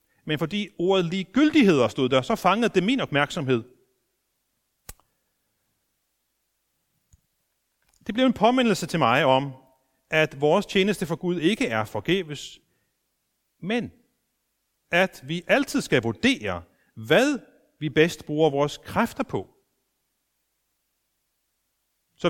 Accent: native